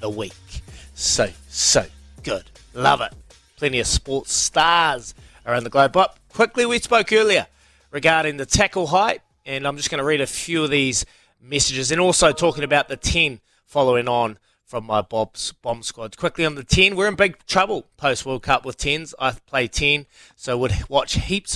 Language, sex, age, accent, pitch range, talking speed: English, male, 20-39, Australian, 110-150 Hz, 185 wpm